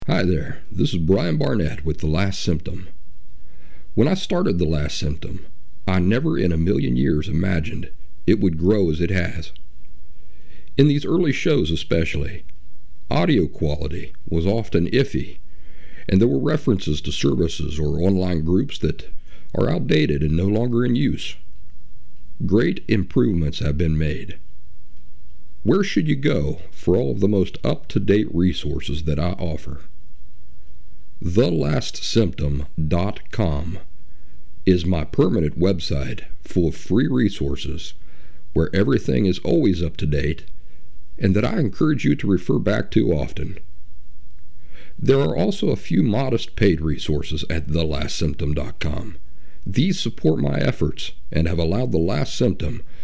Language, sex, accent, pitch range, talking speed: English, male, American, 75-95 Hz, 140 wpm